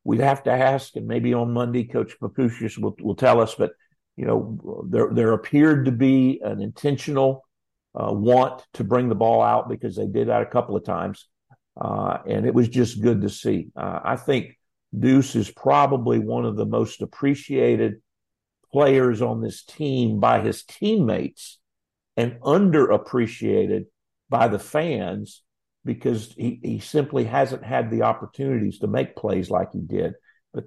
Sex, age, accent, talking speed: male, 50-69, American, 165 wpm